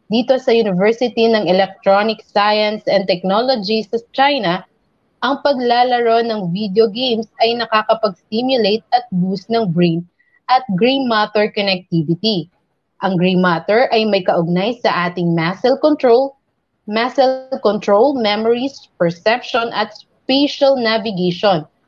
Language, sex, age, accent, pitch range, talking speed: Filipino, female, 20-39, native, 200-235 Hz, 120 wpm